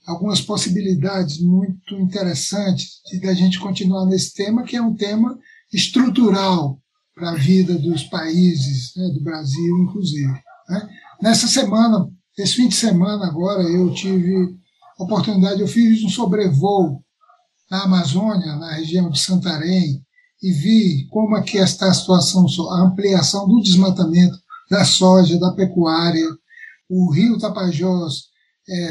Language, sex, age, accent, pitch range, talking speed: Portuguese, male, 60-79, Brazilian, 175-205 Hz, 135 wpm